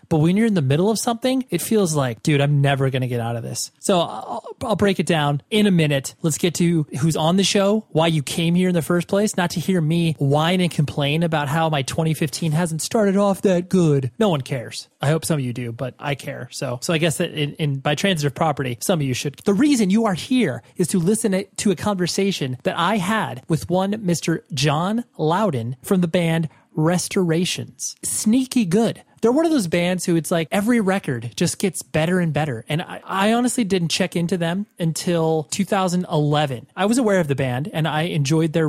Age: 30-49